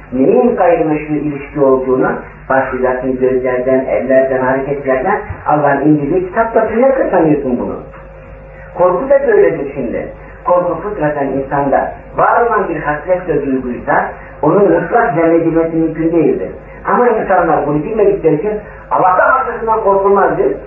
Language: Turkish